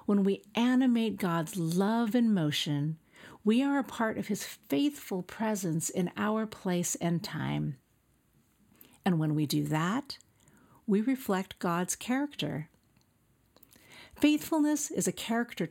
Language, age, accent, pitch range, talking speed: English, 50-69, American, 165-225 Hz, 125 wpm